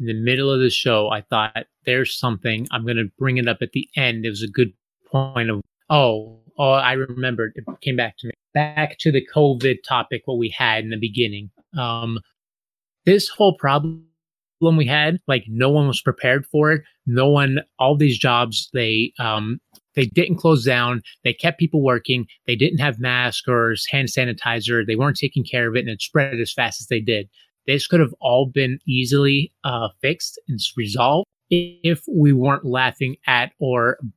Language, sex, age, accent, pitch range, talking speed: English, male, 30-49, American, 120-145 Hz, 190 wpm